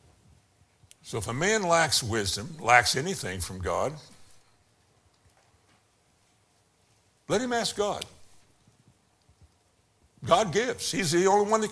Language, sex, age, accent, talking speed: English, male, 60-79, American, 110 wpm